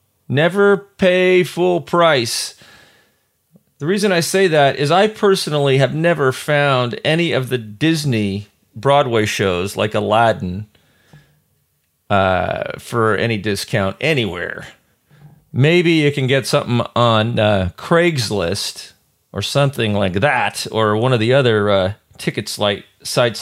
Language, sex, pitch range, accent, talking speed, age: English, male, 105-155 Hz, American, 125 wpm, 40-59